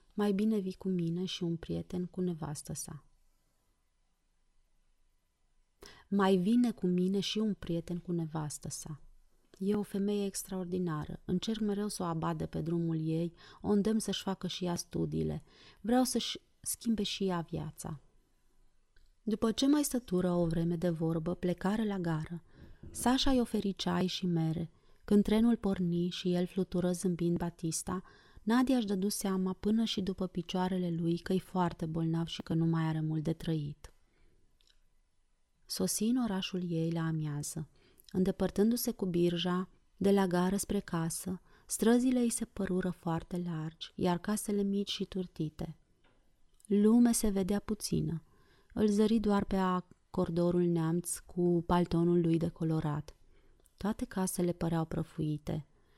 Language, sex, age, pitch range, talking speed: Romanian, female, 30-49, 165-200 Hz, 140 wpm